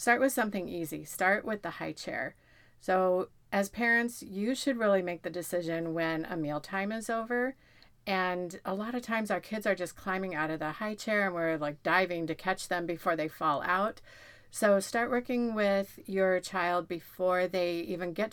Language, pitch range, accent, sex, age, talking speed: English, 165-205 Hz, American, female, 40-59, 195 wpm